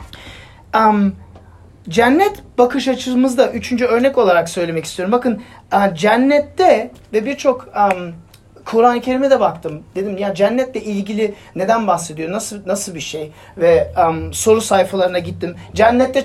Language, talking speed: Turkish, 130 wpm